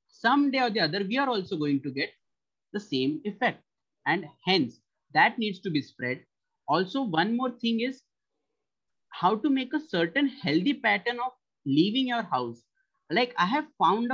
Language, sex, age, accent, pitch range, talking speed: English, male, 30-49, Indian, 180-260 Hz, 175 wpm